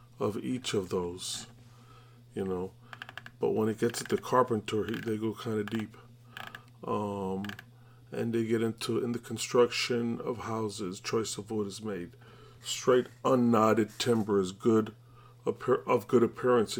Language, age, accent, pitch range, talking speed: English, 40-59, American, 110-120 Hz, 155 wpm